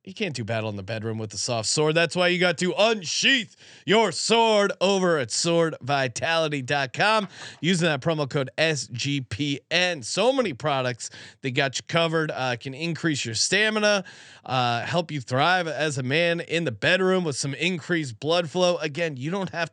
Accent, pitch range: American, 135-185 Hz